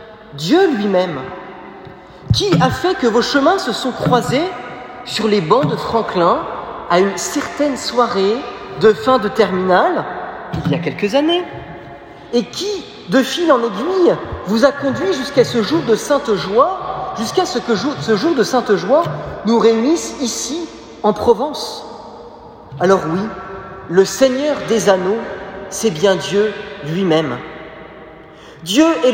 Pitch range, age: 200-265 Hz, 40-59